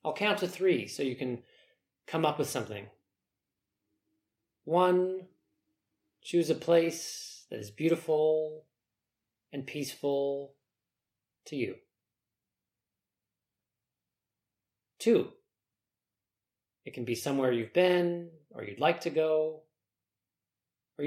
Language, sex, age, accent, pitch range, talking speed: English, male, 30-49, American, 105-155 Hz, 100 wpm